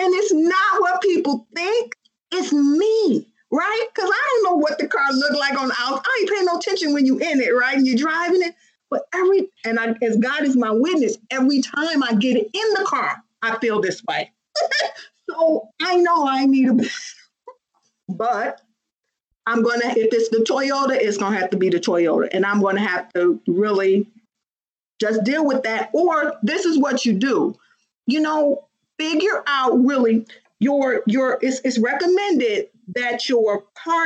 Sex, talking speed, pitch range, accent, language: female, 190 wpm, 210-310 Hz, American, English